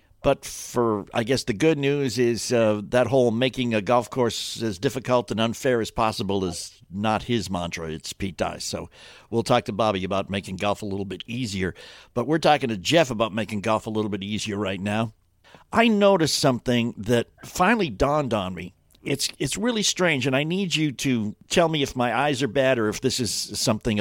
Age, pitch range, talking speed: 60-79, 105-140 Hz, 205 wpm